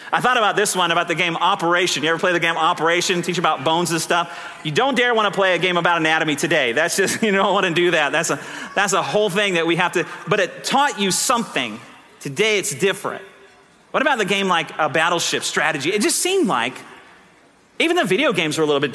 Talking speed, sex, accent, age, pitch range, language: 245 wpm, male, American, 40-59, 165-220 Hz, English